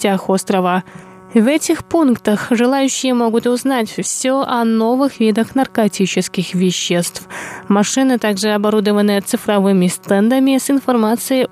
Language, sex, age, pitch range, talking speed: Russian, female, 20-39, 190-240 Hz, 100 wpm